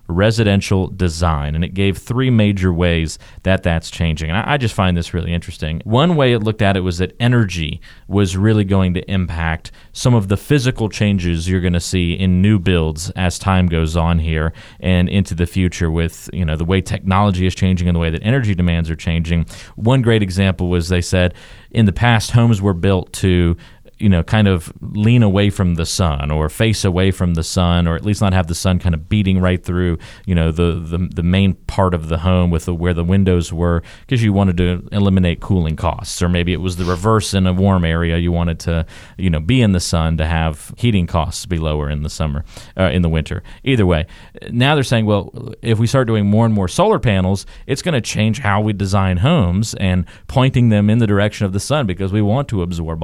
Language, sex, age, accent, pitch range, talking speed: English, male, 30-49, American, 85-105 Hz, 225 wpm